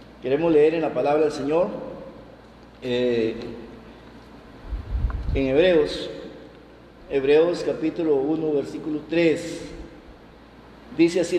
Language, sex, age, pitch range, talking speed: Spanish, male, 50-69, 140-170 Hz, 90 wpm